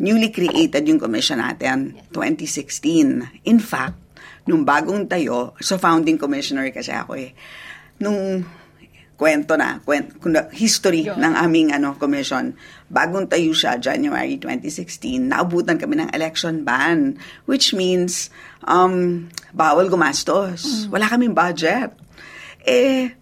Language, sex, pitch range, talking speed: Filipino, female, 160-250 Hz, 115 wpm